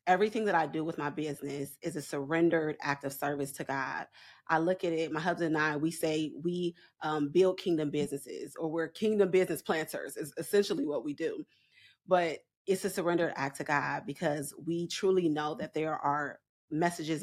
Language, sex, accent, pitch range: English, female, American, 155-210 Hz